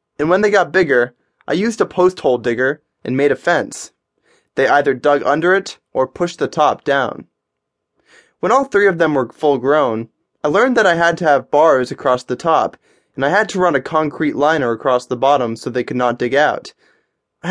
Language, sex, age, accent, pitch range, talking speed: English, male, 20-39, American, 125-175 Hz, 215 wpm